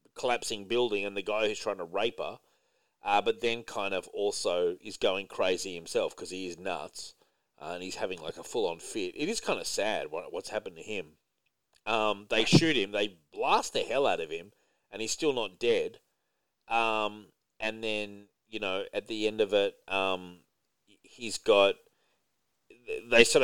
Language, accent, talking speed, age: English, Australian, 185 wpm, 30-49